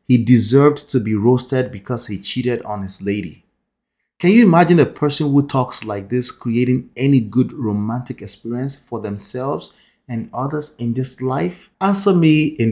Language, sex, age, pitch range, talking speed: English, male, 30-49, 115-150 Hz, 165 wpm